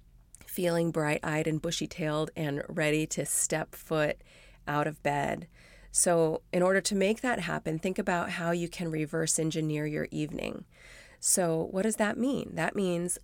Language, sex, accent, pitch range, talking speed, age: English, female, American, 160-195 Hz, 170 wpm, 30-49